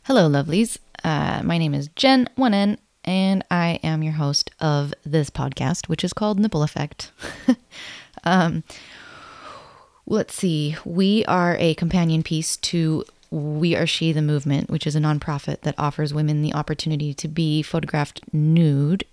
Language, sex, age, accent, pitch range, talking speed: English, female, 20-39, American, 150-175 Hz, 150 wpm